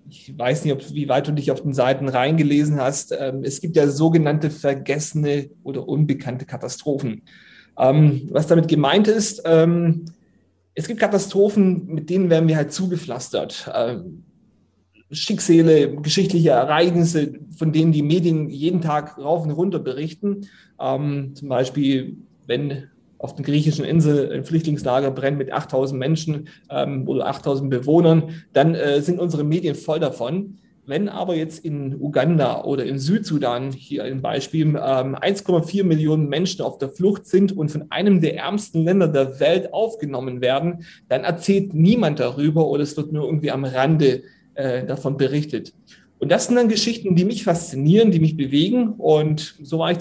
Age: 30-49